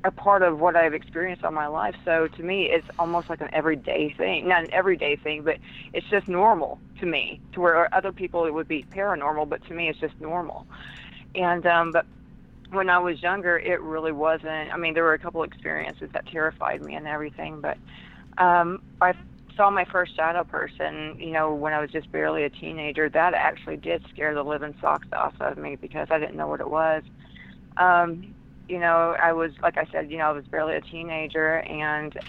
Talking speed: 210 wpm